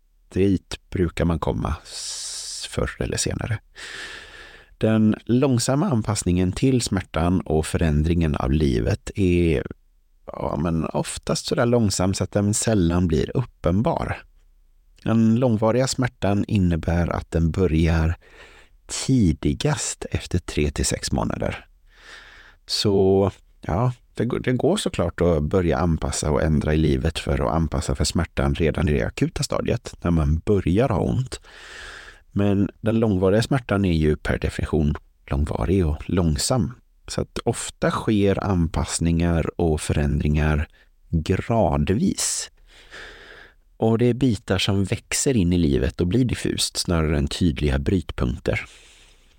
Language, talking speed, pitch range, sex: Swedish, 125 wpm, 75-105 Hz, male